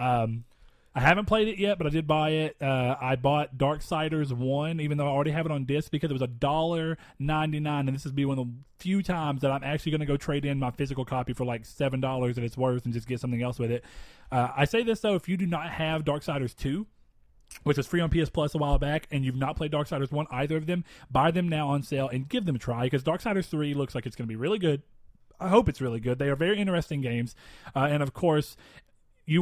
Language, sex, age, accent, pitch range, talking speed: English, male, 30-49, American, 125-155 Hz, 260 wpm